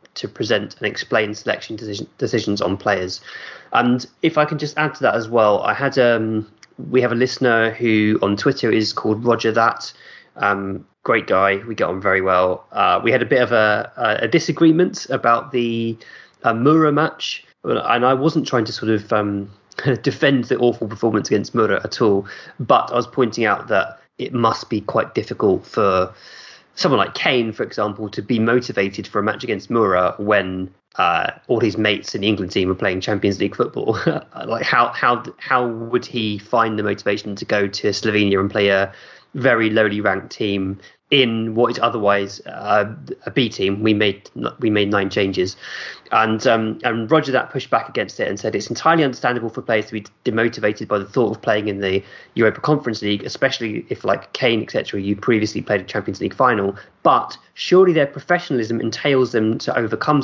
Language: English